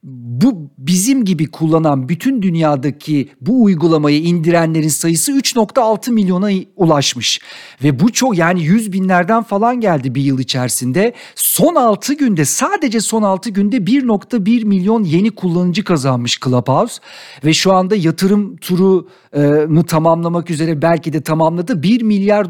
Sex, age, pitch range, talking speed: male, 50-69, 155-200 Hz, 135 wpm